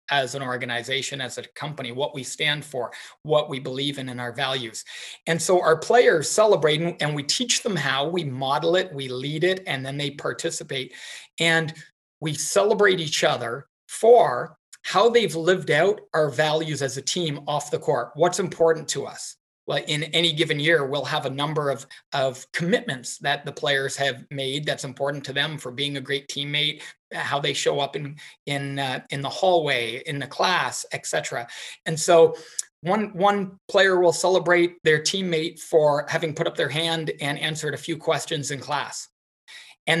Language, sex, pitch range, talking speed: English, male, 140-170 Hz, 185 wpm